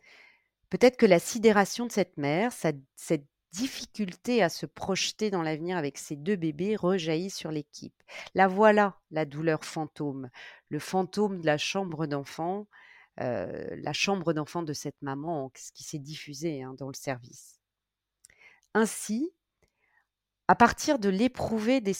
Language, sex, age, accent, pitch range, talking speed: French, female, 40-59, French, 155-210 Hz, 145 wpm